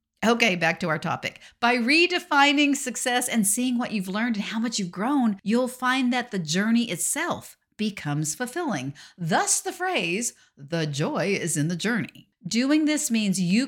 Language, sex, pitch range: English, female, 175-250 Hz